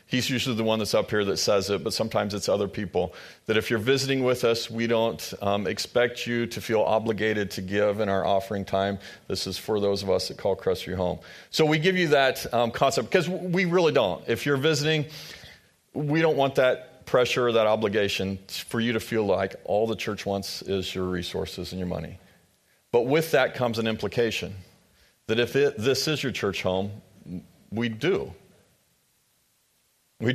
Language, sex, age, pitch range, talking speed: English, male, 40-59, 100-125 Hz, 195 wpm